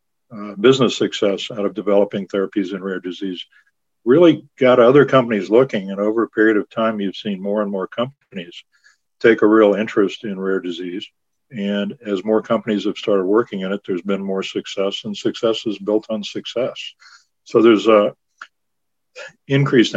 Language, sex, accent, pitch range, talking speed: English, male, American, 100-115 Hz, 170 wpm